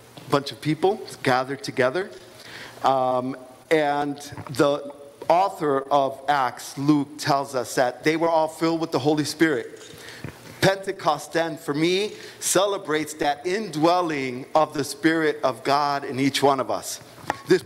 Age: 50-69